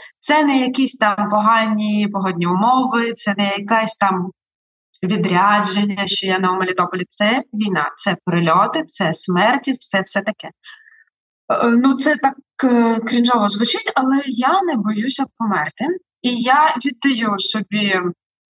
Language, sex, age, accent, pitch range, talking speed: Ukrainian, female, 20-39, native, 205-270 Hz, 125 wpm